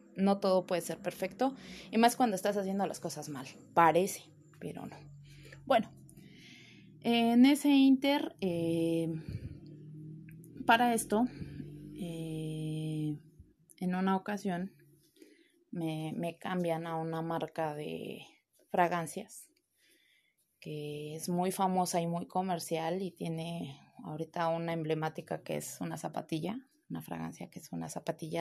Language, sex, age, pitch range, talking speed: Spanish, female, 20-39, 160-220 Hz, 120 wpm